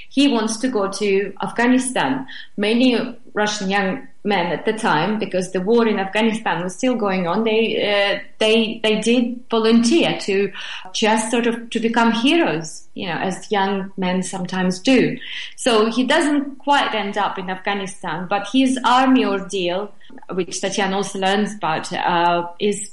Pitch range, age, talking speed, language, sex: 195-240 Hz, 30-49, 160 wpm, English, female